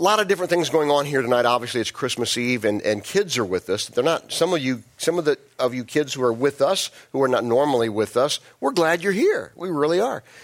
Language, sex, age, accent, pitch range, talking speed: English, male, 50-69, American, 115-165 Hz, 270 wpm